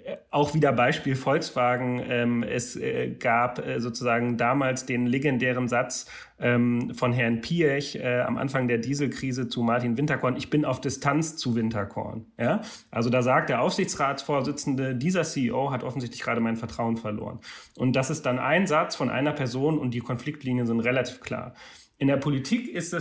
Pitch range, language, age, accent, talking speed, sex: 120-145 Hz, German, 30-49, German, 165 wpm, male